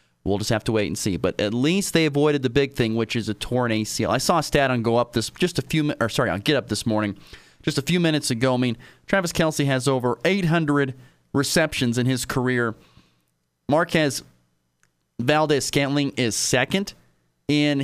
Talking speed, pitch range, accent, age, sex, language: 200 wpm, 105-145 Hz, American, 30-49, male, English